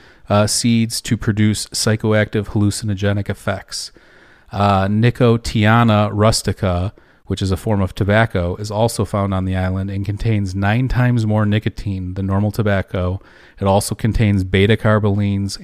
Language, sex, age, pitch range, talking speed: English, male, 40-59, 100-110 Hz, 140 wpm